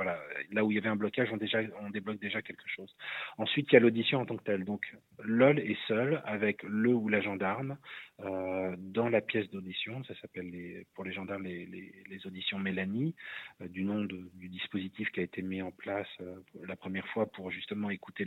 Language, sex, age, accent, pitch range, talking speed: French, male, 30-49, French, 95-110 Hz, 225 wpm